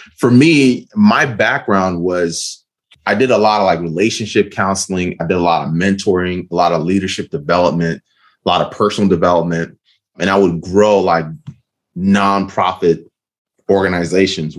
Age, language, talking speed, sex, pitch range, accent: 30-49, English, 150 wpm, male, 90-110 Hz, American